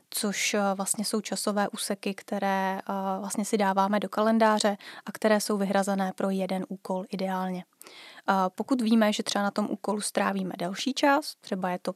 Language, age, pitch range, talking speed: Czech, 20-39, 190-210 Hz, 170 wpm